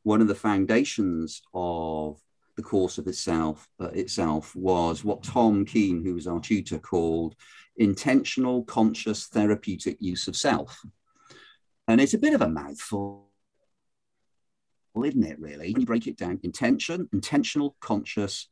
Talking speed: 140 wpm